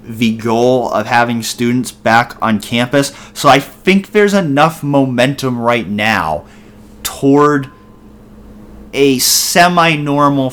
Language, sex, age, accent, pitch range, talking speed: English, male, 30-49, American, 110-135 Hz, 110 wpm